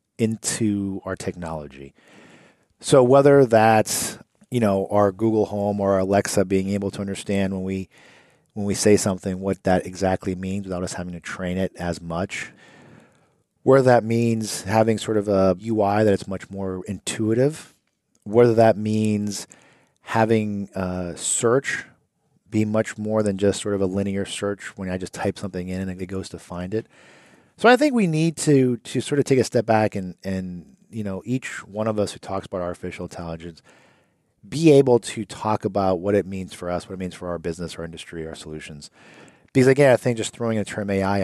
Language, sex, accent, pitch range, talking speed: English, male, American, 95-110 Hz, 190 wpm